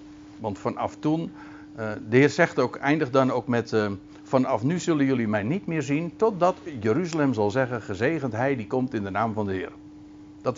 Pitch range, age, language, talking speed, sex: 115-190 Hz, 60-79, Dutch, 200 wpm, male